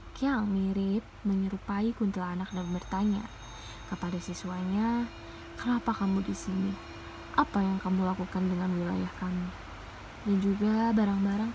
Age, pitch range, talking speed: 20-39, 190-240 Hz, 120 wpm